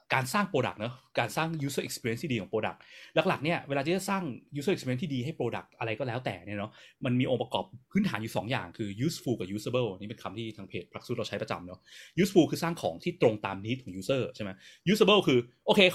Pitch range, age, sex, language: 110-150 Hz, 20-39, male, Thai